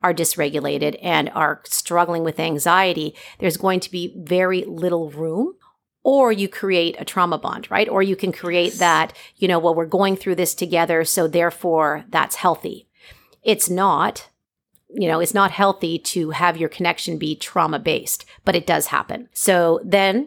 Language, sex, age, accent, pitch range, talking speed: English, female, 40-59, American, 165-200 Hz, 170 wpm